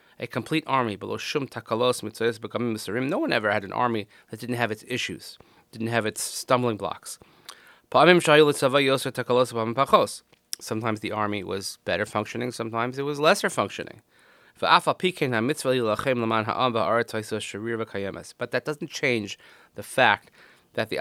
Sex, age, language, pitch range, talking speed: male, 30-49, English, 105-125 Hz, 110 wpm